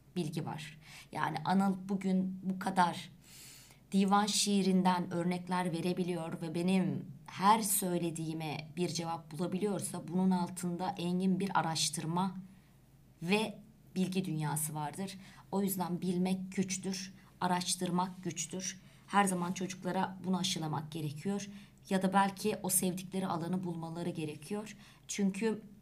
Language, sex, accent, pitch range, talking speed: Turkish, male, native, 170-205 Hz, 110 wpm